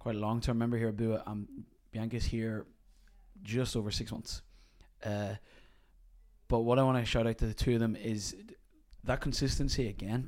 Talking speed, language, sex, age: 180 wpm, English, male, 20-39